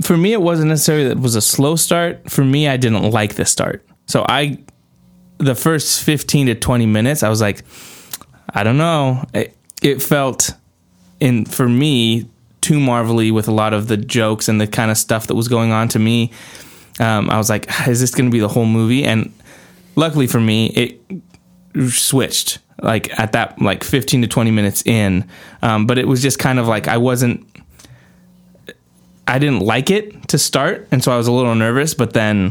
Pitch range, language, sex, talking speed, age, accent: 110-135 Hz, English, male, 200 wpm, 20-39, American